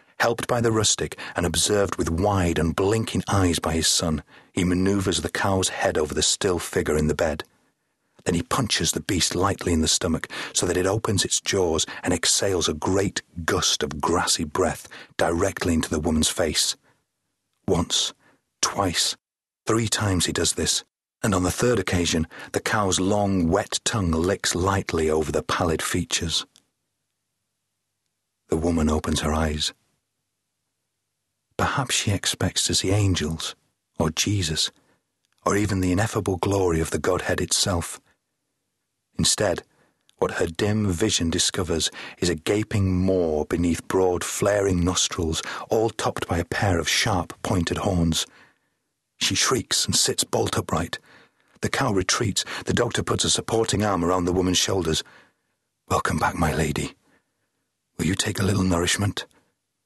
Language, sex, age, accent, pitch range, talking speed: English, male, 40-59, British, 80-100 Hz, 150 wpm